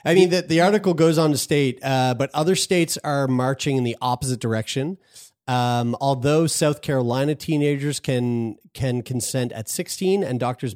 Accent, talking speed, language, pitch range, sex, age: American, 175 wpm, English, 120-145 Hz, male, 30-49